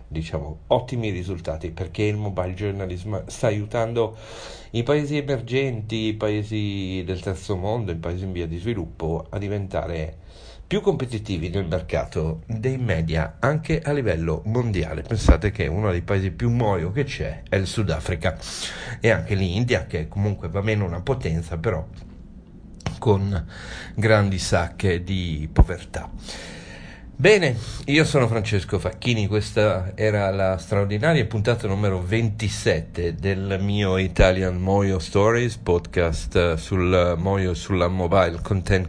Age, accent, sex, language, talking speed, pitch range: 50-69, native, male, Italian, 130 wpm, 90-115 Hz